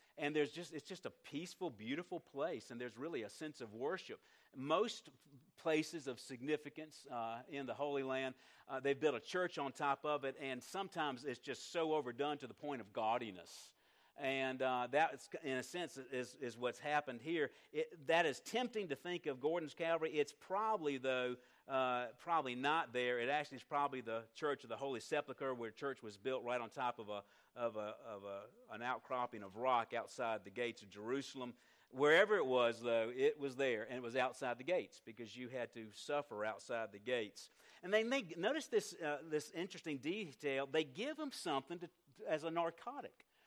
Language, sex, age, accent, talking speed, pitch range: English, male, 50-69, American, 195 wpm, 125-170 Hz